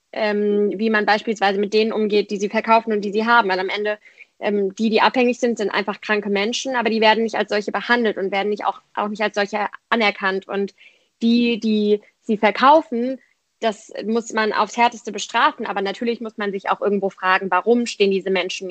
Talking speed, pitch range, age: 210 wpm, 200-220 Hz, 20-39